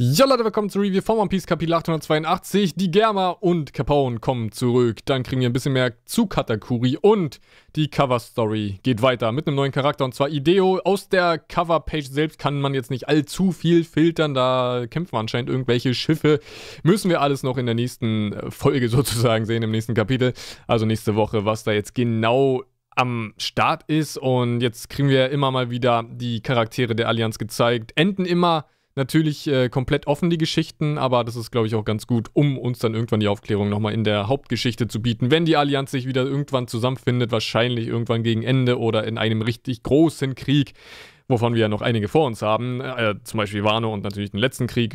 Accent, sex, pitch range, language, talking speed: German, male, 115-145 Hz, German, 200 wpm